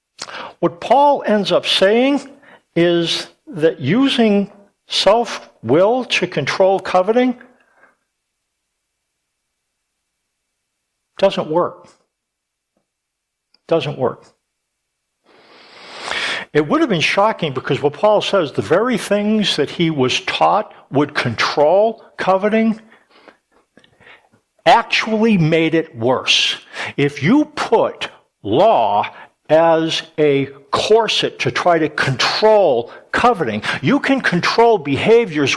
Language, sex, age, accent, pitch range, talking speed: English, male, 60-79, American, 145-210 Hz, 95 wpm